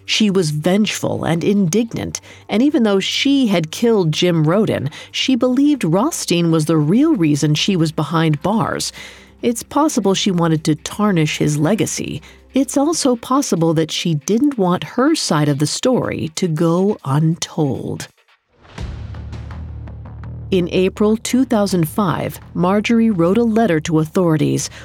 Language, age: English, 40-59